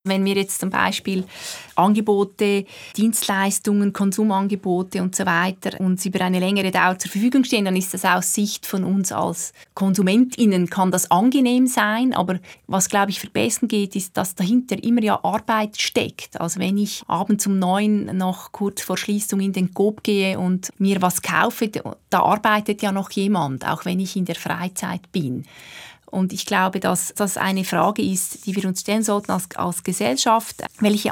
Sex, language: female, German